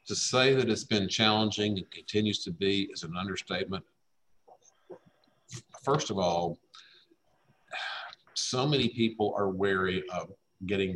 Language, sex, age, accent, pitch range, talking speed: English, male, 50-69, American, 95-110 Hz, 125 wpm